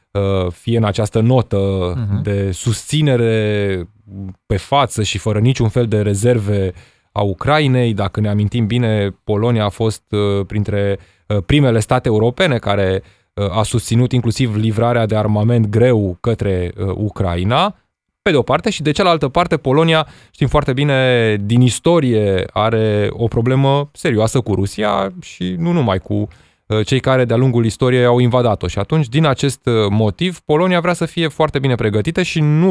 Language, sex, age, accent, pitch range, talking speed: Romanian, male, 20-39, native, 105-130 Hz, 150 wpm